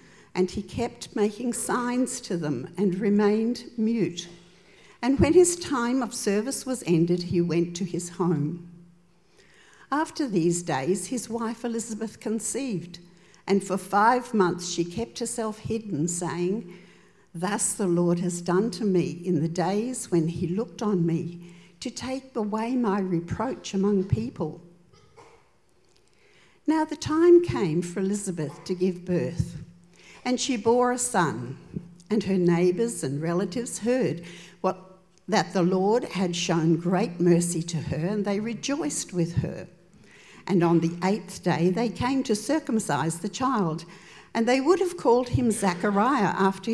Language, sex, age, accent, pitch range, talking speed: English, female, 60-79, Australian, 175-230 Hz, 150 wpm